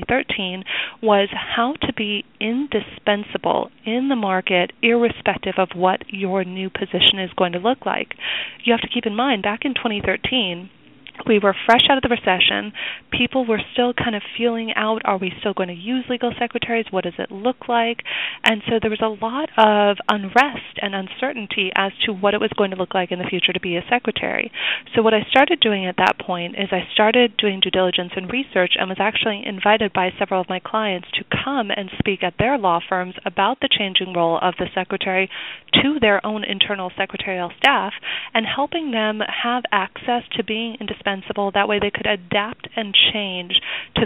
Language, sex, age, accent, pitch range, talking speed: English, female, 30-49, American, 190-235 Hz, 195 wpm